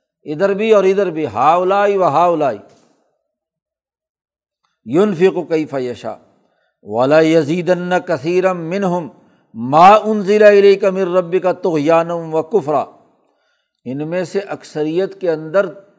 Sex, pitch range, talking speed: male, 160-195 Hz, 105 wpm